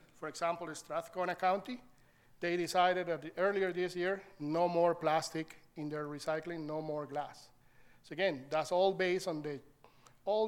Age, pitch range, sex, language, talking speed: 50-69, 150-180 Hz, male, English, 150 wpm